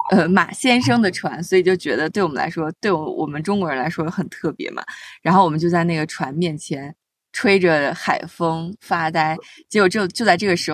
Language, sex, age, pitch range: Chinese, female, 20-39, 170-230 Hz